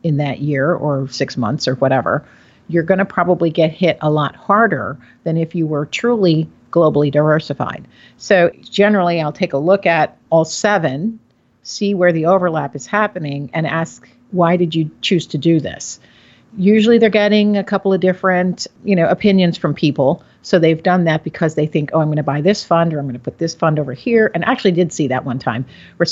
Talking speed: 210 wpm